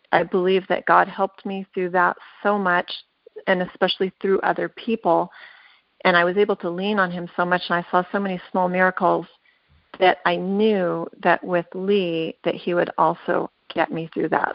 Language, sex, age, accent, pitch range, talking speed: English, female, 30-49, American, 175-200 Hz, 190 wpm